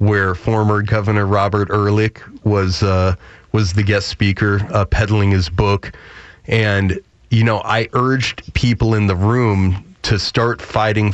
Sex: male